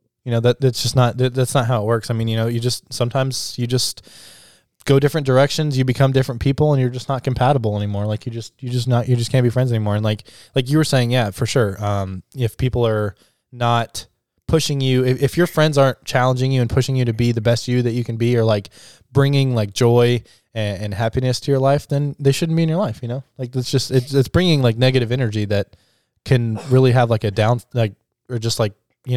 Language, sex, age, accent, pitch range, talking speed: English, male, 20-39, American, 110-130 Hz, 250 wpm